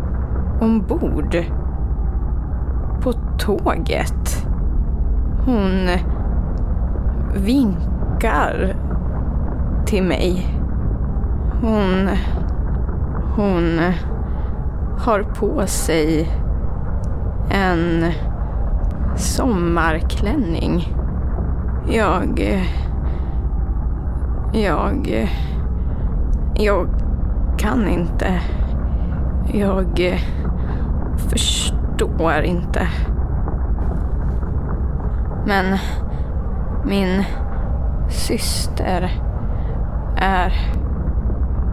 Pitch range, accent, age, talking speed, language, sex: 70-80 Hz, native, 20-39, 40 wpm, Swedish, female